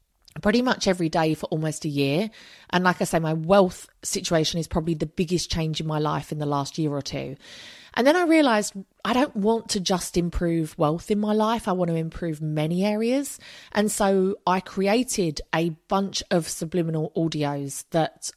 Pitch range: 165-220 Hz